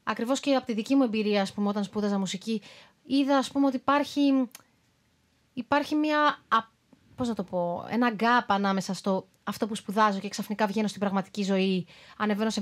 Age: 20-39